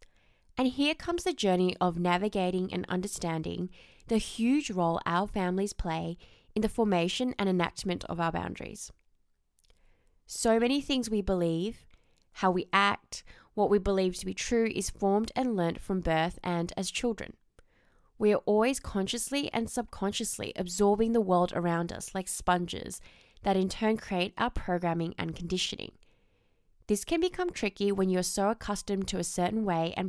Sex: female